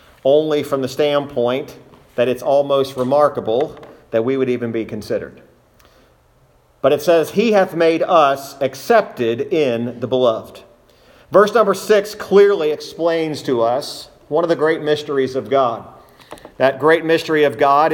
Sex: male